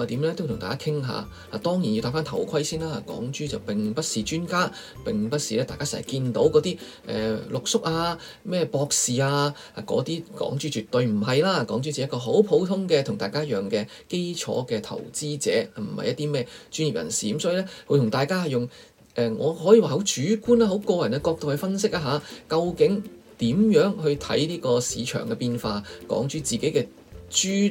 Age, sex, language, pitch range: 20-39, male, Chinese, 120-180 Hz